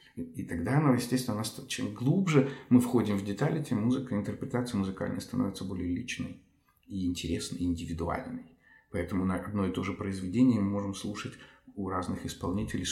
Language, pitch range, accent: Ukrainian, 95-125 Hz, native